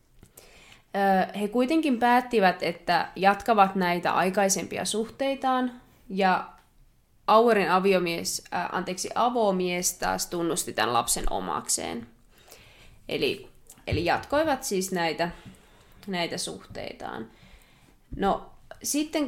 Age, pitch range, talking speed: 20-39, 180-235 Hz, 85 wpm